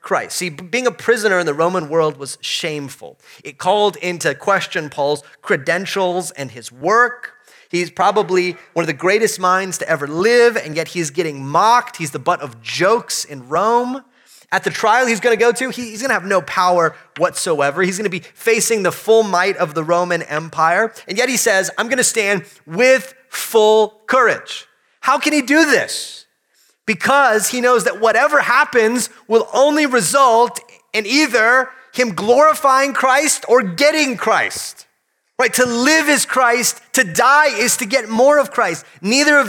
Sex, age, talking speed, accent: male, 30-49, 175 wpm, American